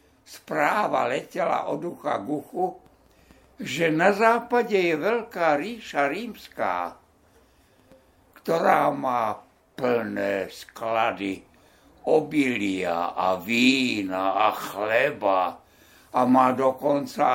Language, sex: Slovak, male